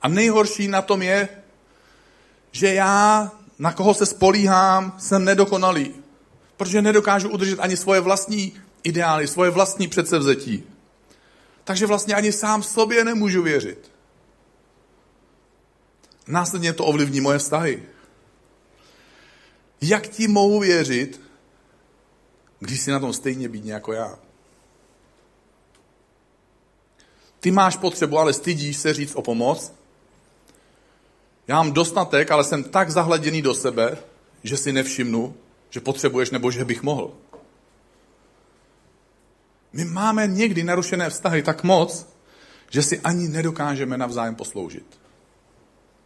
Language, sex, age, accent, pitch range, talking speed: Czech, male, 40-59, native, 135-195 Hz, 115 wpm